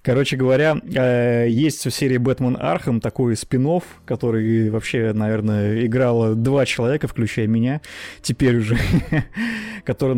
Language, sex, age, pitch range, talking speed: Russian, male, 20-39, 110-135 Hz, 120 wpm